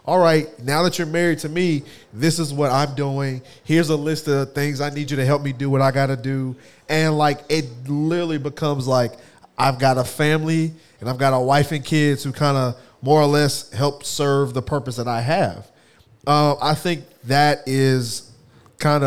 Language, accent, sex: English, American, male